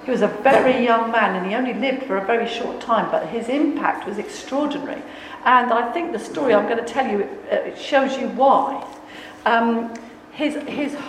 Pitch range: 210-265 Hz